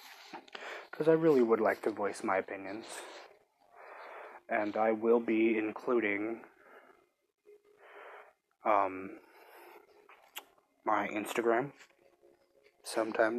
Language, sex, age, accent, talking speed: English, male, 20-39, American, 80 wpm